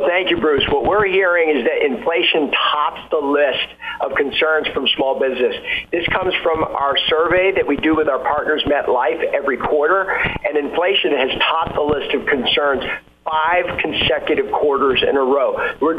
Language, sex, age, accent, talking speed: English, male, 50-69, American, 175 wpm